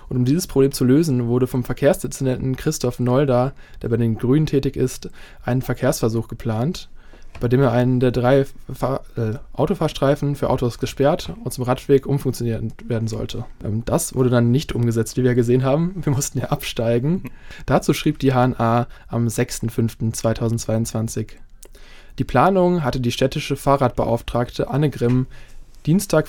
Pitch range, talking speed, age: 120-140 Hz, 150 wpm, 20-39